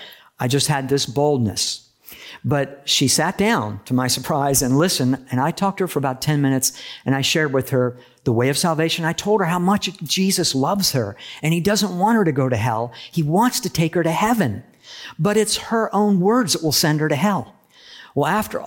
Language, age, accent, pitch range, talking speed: English, 50-69, American, 125-170 Hz, 220 wpm